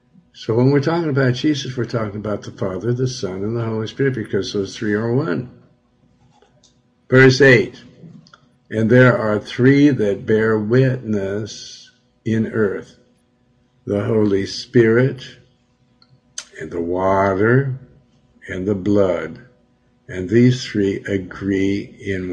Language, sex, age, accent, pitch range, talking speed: English, male, 60-79, American, 100-125 Hz, 125 wpm